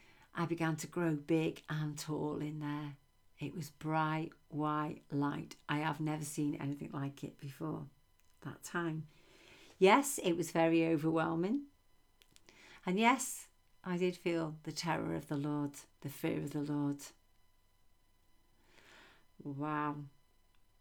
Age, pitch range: 50-69, 145-170 Hz